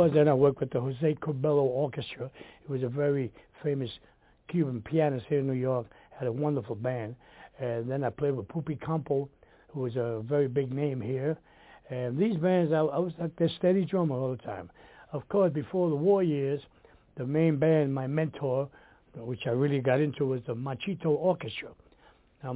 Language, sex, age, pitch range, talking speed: English, male, 60-79, 125-150 Hz, 190 wpm